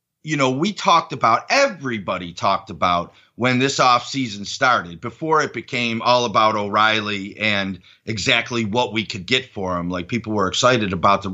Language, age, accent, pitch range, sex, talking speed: English, 40-59, American, 110-135 Hz, male, 165 wpm